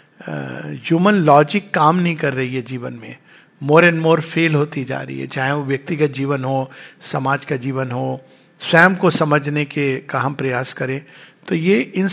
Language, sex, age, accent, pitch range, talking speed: English, male, 50-69, Indian, 145-190 Hz, 185 wpm